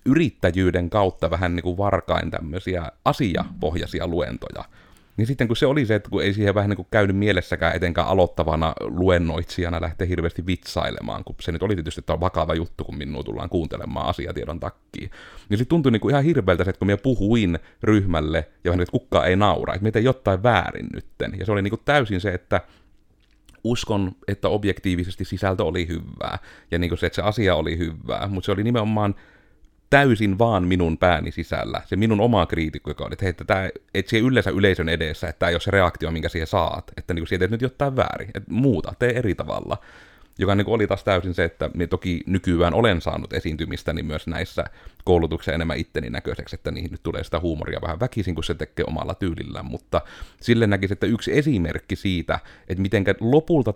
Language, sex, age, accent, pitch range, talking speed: Finnish, male, 30-49, native, 85-105 Hz, 195 wpm